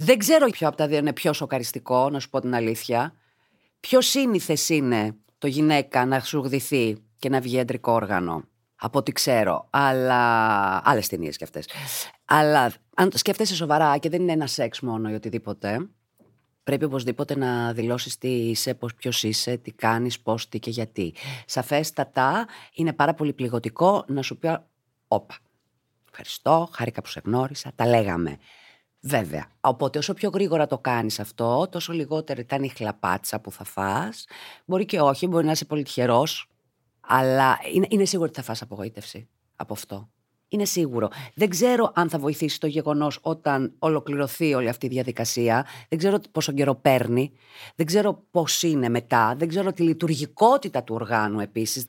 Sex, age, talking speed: female, 30-49, 165 wpm